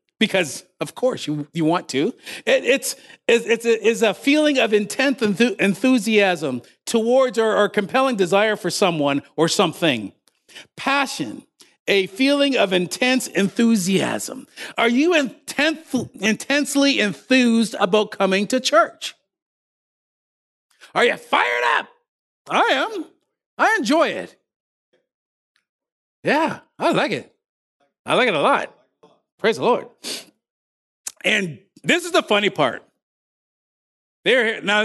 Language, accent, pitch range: English, American, 190-280 Hz